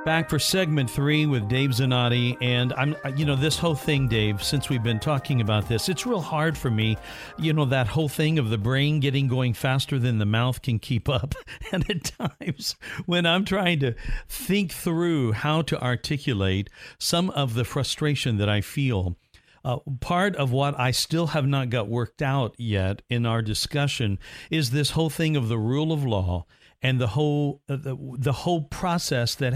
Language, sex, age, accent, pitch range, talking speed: English, male, 50-69, American, 120-160 Hz, 195 wpm